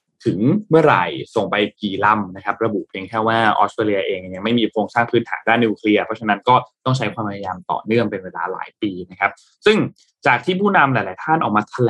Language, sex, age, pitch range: Thai, male, 20-39, 105-130 Hz